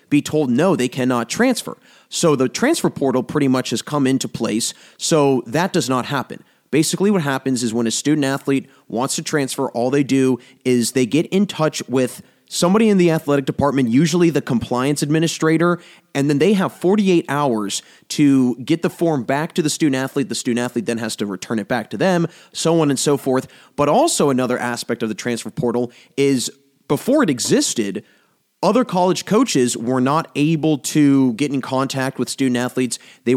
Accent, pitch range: American, 125-155 Hz